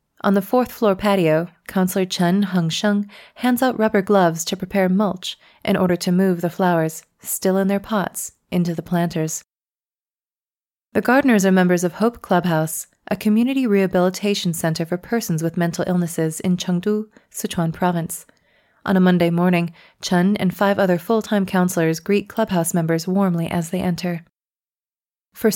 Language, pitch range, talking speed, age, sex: English, 170-200 Hz, 155 wpm, 20-39, female